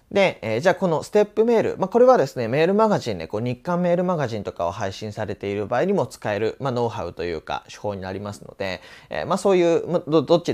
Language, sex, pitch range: Japanese, male, 105-165 Hz